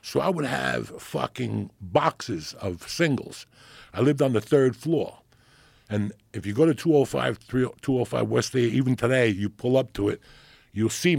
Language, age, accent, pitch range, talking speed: English, 60-79, American, 105-135 Hz, 160 wpm